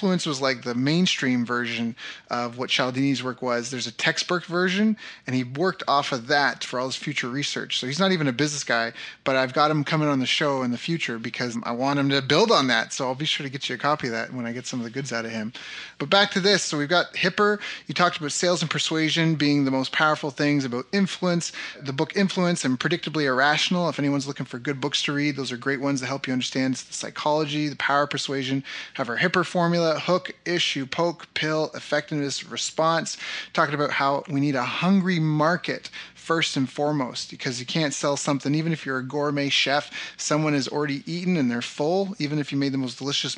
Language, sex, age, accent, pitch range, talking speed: English, male, 30-49, American, 130-155 Hz, 230 wpm